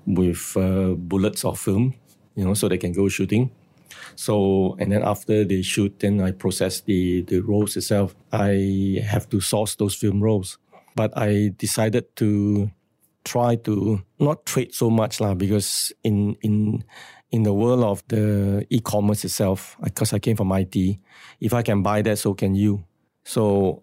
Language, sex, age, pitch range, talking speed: English, male, 50-69, 100-115 Hz, 165 wpm